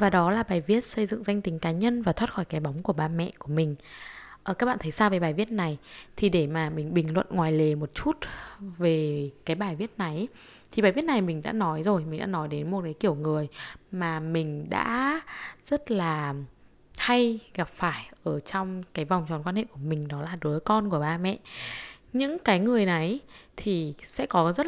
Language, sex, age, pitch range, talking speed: Vietnamese, female, 10-29, 160-215 Hz, 225 wpm